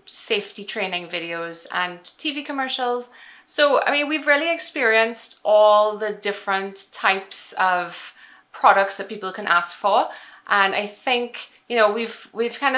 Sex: female